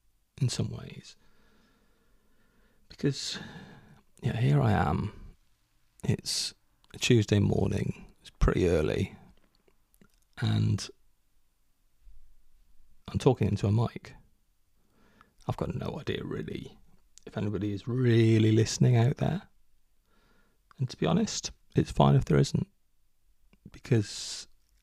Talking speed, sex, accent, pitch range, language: 105 wpm, male, British, 100-125 Hz, English